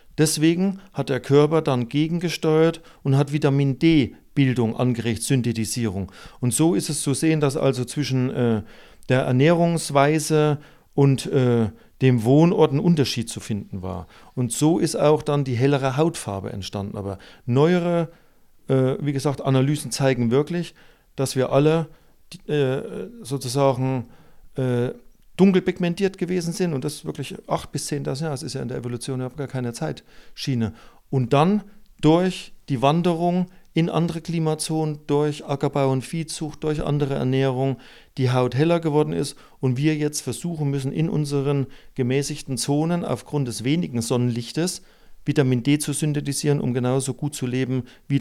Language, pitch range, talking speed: German, 125-155 Hz, 145 wpm